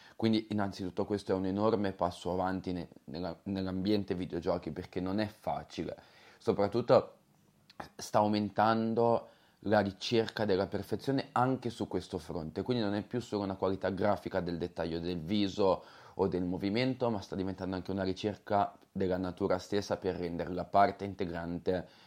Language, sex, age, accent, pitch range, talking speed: Italian, male, 30-49, native, 90-110 Hz, 150 wpm